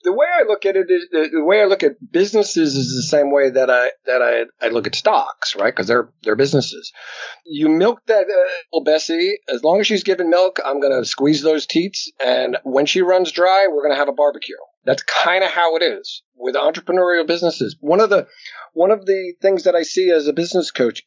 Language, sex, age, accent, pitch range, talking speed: English, male, 50-69, American, 140-210 Hz, 230 wpm